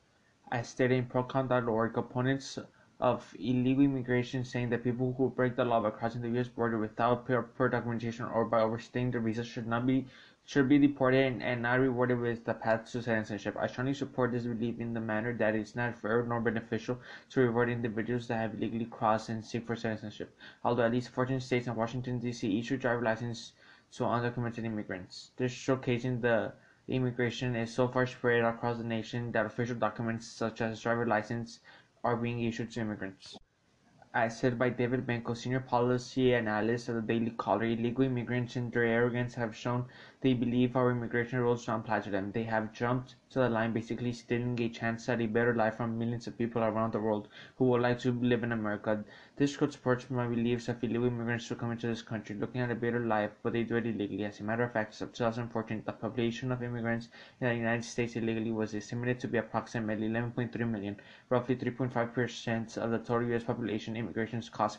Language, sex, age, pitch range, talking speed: English, male, 20-39, 115-125 Hz, 205 wpm